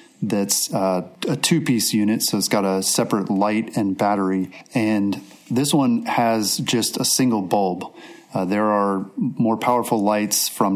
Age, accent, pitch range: 30-49, American, 95-115 Hz